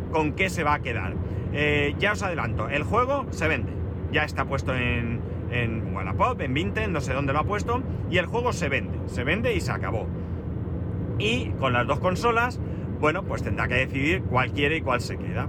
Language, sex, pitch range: Spanish, male, 95-130 Hz